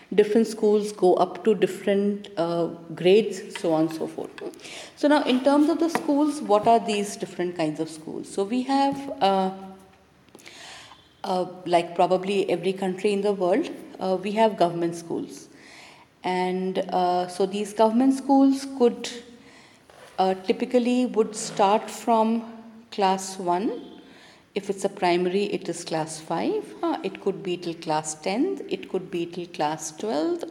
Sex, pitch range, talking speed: female, 180-245 Hz, 150 wpm